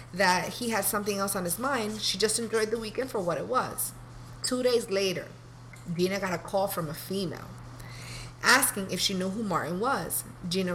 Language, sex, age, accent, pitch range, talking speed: English, female, 30-49, American, 165-215 Hz, 195 wpm